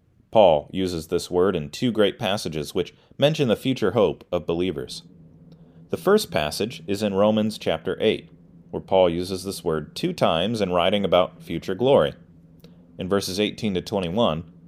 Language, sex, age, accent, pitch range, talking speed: English, male, 30-49, American, 85-125 Hz, 165 wpm